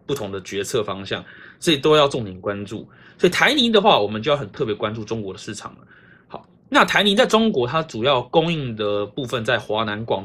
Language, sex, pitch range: Chinese, male, 105-170 Hz